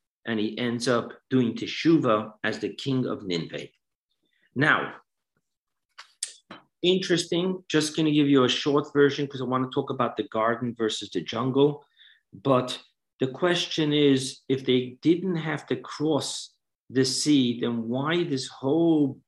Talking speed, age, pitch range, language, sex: 150 wpm, 50-69, 120-145 Hz, English, male